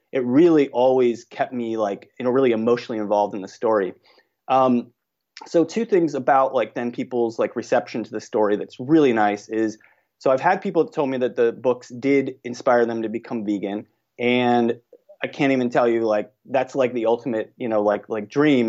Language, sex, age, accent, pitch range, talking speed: English, male, 30-49, American, 115-165 Hz, 200 wpm